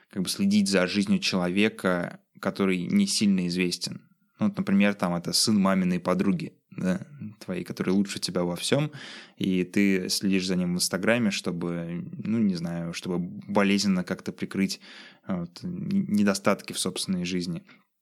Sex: male